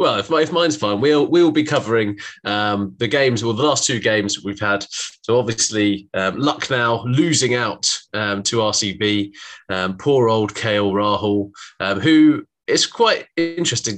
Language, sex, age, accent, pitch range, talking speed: English, male, 20-39, British, 105-140 Hz, 165 wpm